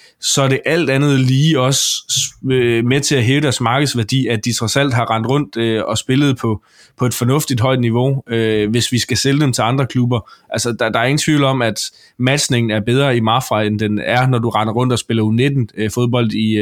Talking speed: 205 wpm